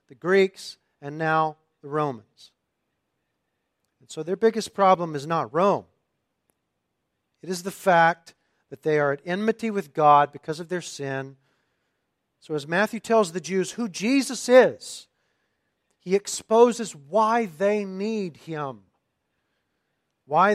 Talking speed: 130 wpm